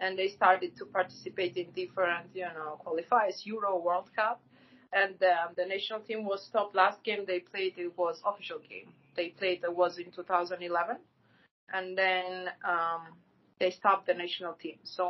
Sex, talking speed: female, 170 wpm